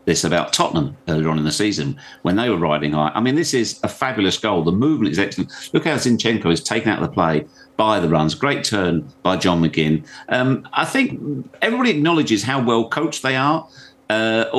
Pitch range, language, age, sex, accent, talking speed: 85-120 Hz, English, 50-69, male, British, 215 wpm